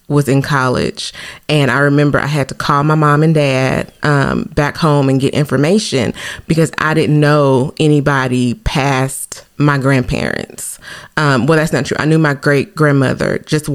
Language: English